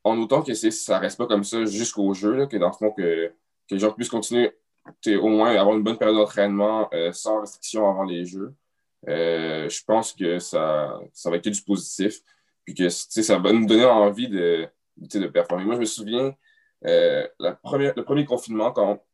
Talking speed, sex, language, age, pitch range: 210 wpm, male, French, 20-39, 100-120 Hz